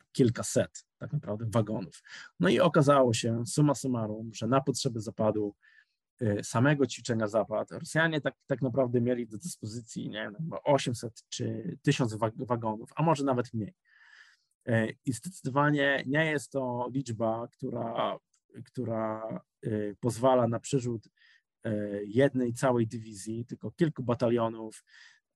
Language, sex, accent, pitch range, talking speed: Polish, male, native, 115-140 Hz, 120 wpm